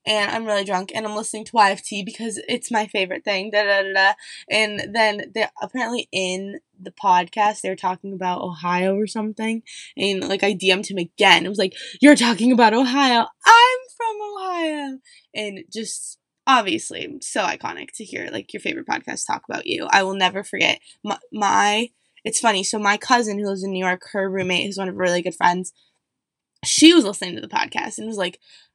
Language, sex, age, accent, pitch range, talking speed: English, female, 20-39, American, 195-250 Hz, 195 wpm